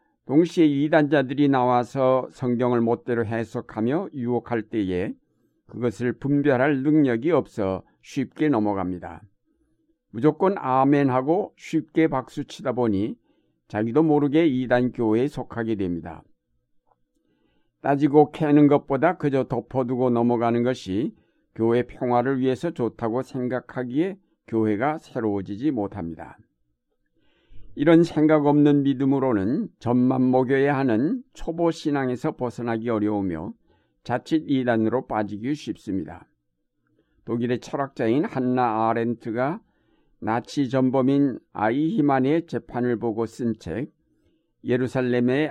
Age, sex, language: 60-79, male, Korean